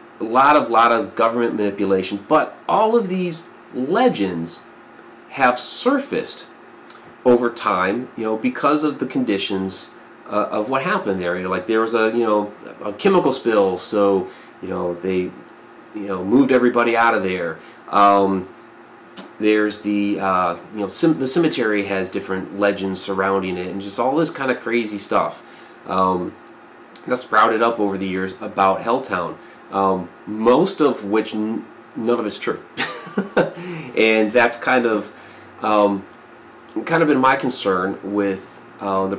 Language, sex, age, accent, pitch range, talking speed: English, male, 30-49, American, 95-120 Hz, 155 wpm